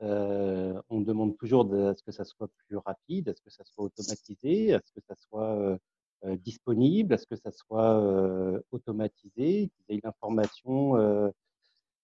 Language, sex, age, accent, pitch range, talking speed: French, male, 40-59, French, 100-115 Hz, 215 wpm